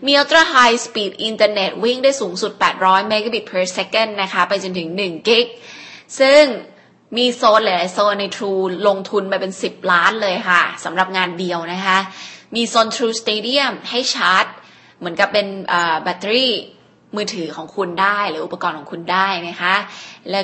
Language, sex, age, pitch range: Thai, female, 20-39, 180-225 Hz